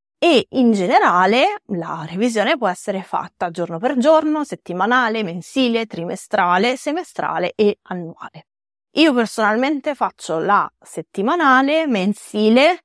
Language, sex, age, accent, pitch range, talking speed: Italian, female, 20-39, native, 180-260 Hz, 105 wpm